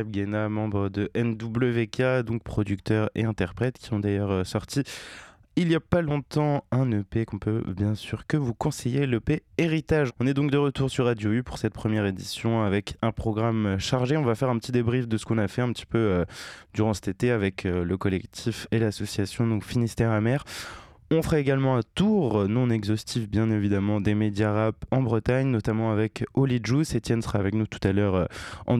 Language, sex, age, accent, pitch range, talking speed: French, male, 20-39, French, 100-125 Hz, 195 wpm